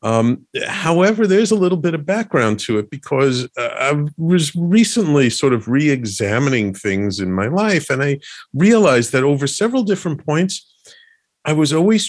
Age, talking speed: 50-69, 165 wpm